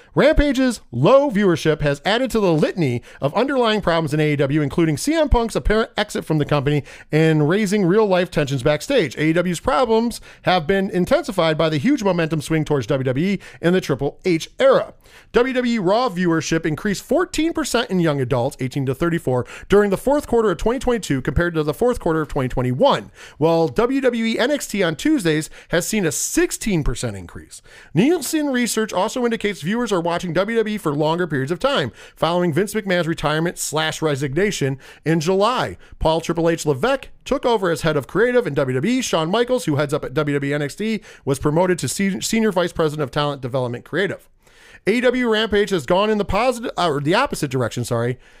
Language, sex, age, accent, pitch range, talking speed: English, male, 40-59, American, 150-225 Hz, 175 wpm